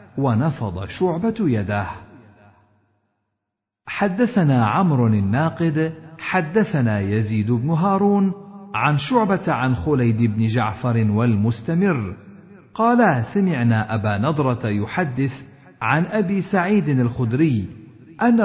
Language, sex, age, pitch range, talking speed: Arabic, male, 50-69, 110-170 Hz, 90 wpm